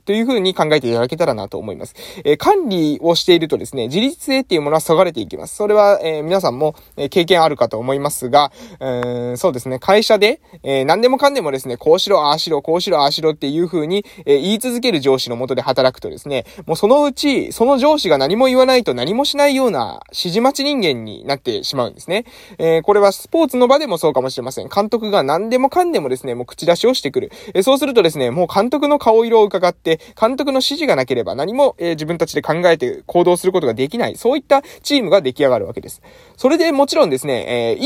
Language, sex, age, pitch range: Japanese, male, 20-39, 150-240 Hz